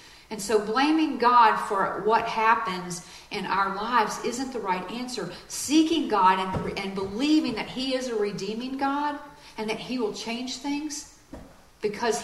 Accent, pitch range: American, 185-245 Hz